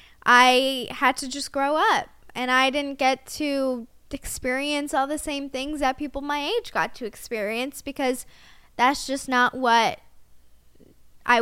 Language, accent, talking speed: English, American, 150 wpm